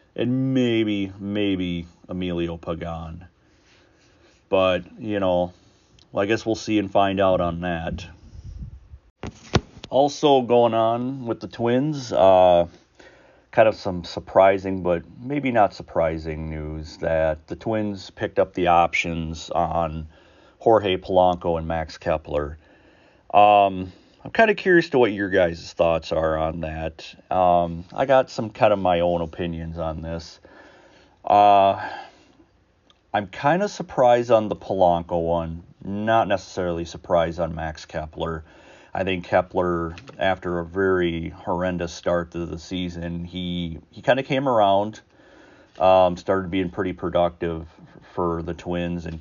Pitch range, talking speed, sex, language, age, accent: 85-100 Hz, 135 wpm, male, English, 40-59, American